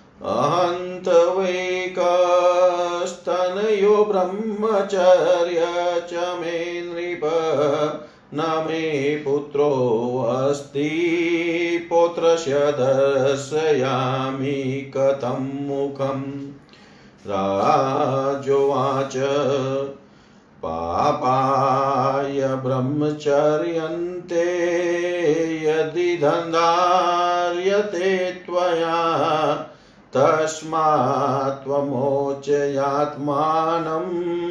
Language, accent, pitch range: Hindi, native, 135-175 Hz